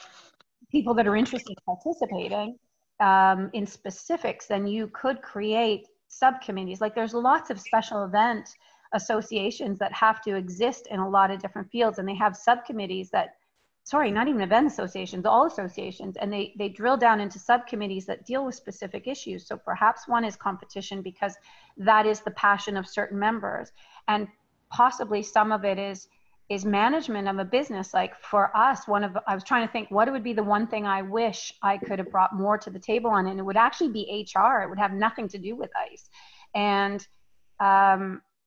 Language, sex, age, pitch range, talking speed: English, female, 30-49, 200-235 Hz, 190 wpm